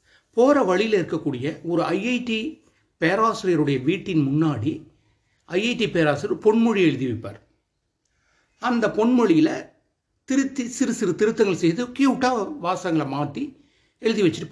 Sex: male